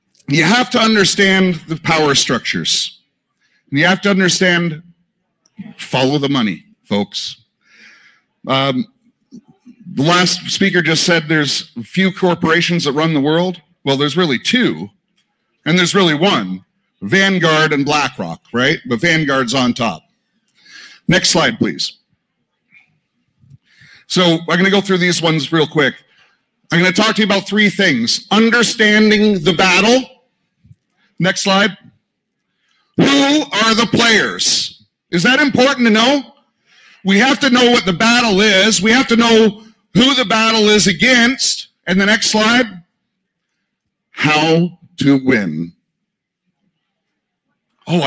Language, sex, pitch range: English, male, 165-225 Hz